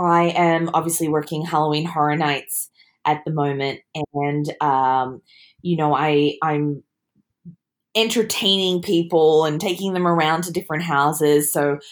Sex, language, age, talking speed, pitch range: female, English, 20-39, 135 wpm, 145-175 Hz